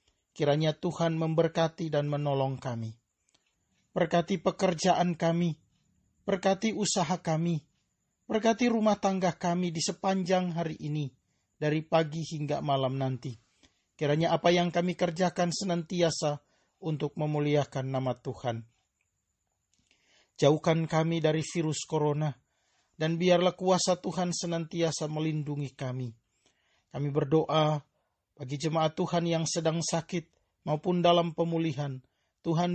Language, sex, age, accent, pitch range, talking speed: Indonesian, male, 40-59, native, 145-180 Hz, 110 wpm